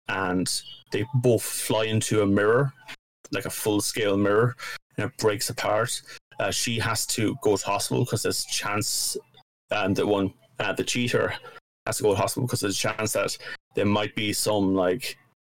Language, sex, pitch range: English, male, 110-130 Hz